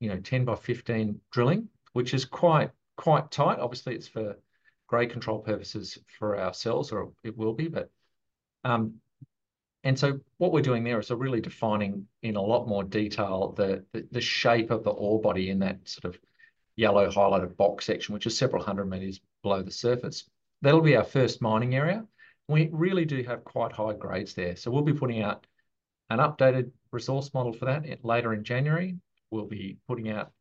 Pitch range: 105-125 Hz